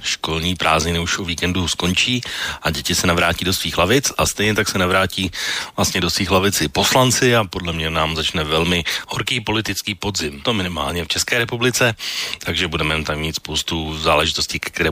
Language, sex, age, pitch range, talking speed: Slovak, male, 40-59, 80-100 Hz, 175 wpm